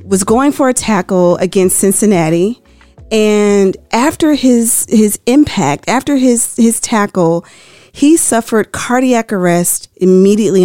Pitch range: 185-245 Hz